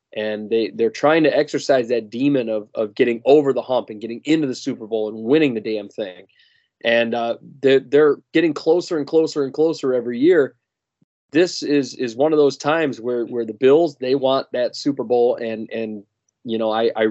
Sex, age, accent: male, 20-39, American